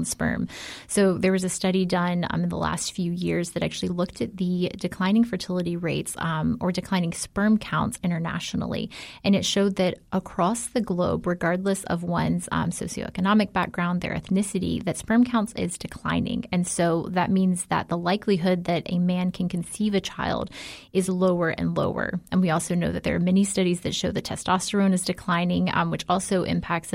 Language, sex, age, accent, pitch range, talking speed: English, female, 20-39, American, 175-195 Hz, 185 wpm